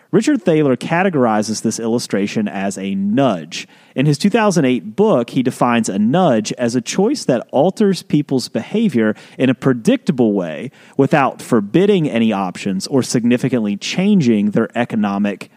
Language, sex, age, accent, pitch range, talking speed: English, male, 30-49, American, 110-175 Hz, 140 wpm